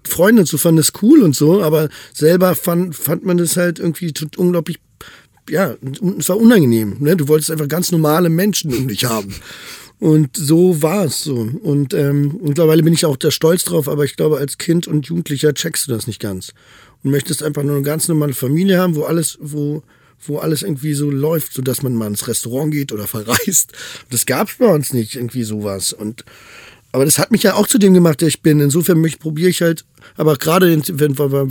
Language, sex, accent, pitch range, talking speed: German, male, German, 125-155 Hz, 210 wpm